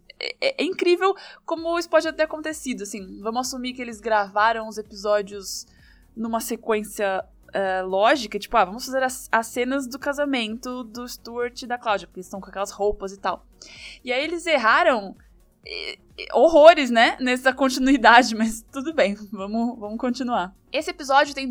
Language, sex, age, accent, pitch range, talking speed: Portuguese, female, 20-39, Brazilian, 225-280 Hz, 165 wpm